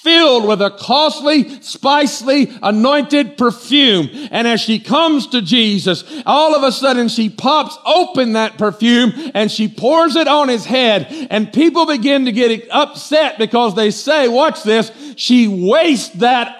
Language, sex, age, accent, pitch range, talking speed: English, male, 50-69, American, 220-285 Hz, 155 wpm